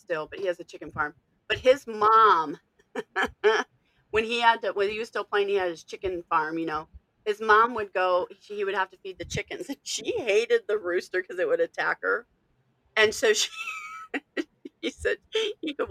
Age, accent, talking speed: 30-49, American, 205 wpm